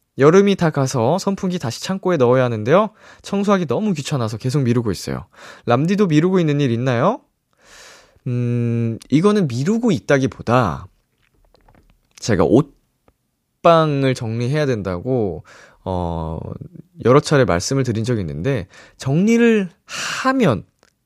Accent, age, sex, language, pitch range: native, 20-39, male, Korean, 115-170 Hz